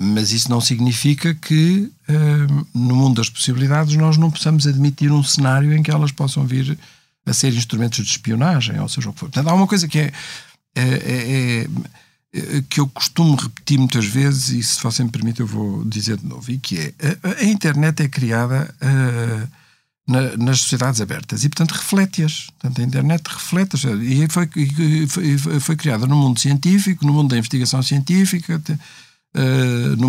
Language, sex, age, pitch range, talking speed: Portuguese, male, 50-69, 125-160 Hz, 180 wpm